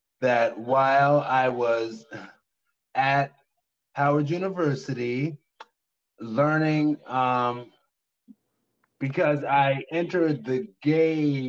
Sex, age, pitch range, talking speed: male, 30-49, 120-150 Hz, 75 wpm